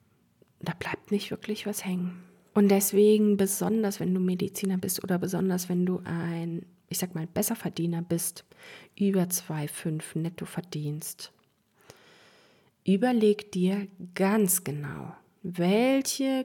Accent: German